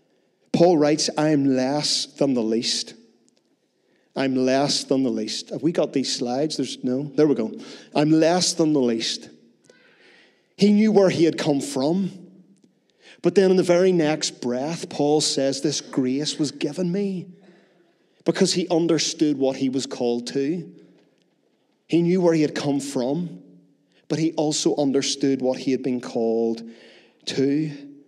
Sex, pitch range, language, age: male, 135-165 Hz, English, 40-59